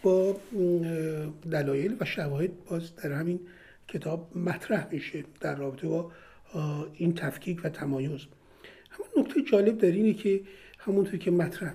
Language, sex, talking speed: Persian, male, 130 wpm